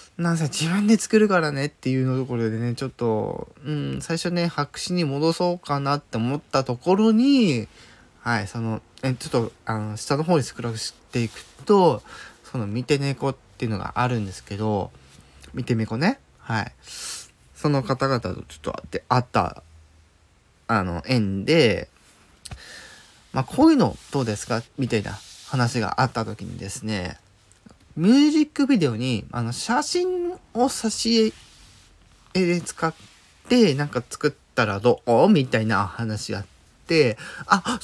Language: Japanese